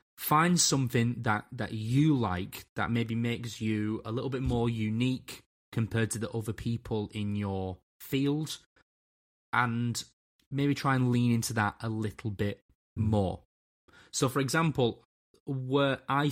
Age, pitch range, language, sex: 20-39, 100-125 Hz, English, male